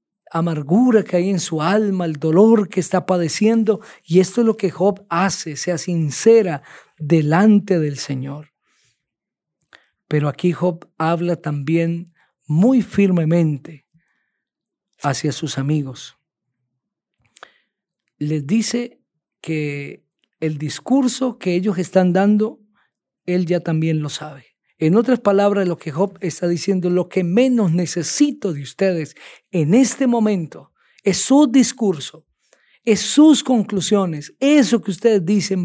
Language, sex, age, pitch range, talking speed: Spanish, male, 40-59, 160-210 Hz, 125 wpm